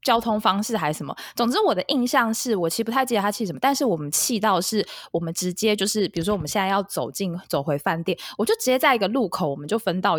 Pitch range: 170-235 Hz